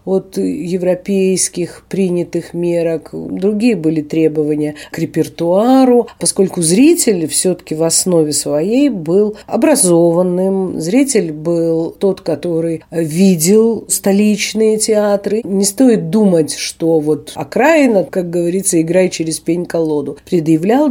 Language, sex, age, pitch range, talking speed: Russian, female, 50-69, 160-210 Hz, 105 wpm